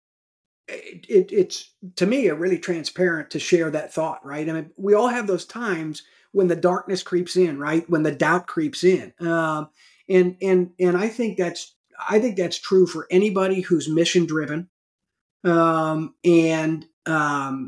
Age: 40-59